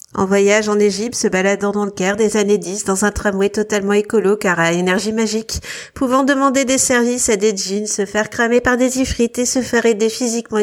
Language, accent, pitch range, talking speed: French, French, 215-260 Hz, 220 wpm